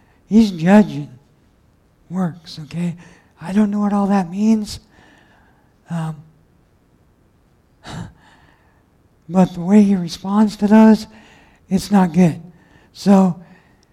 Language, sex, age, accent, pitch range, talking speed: English, male, 60-79, American, 175-205 Hz, 100 wpm